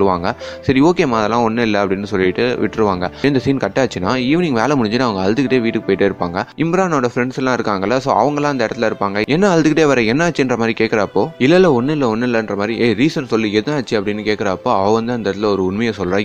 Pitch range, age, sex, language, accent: 100-135 Hz, 20-39, male, Tamil, native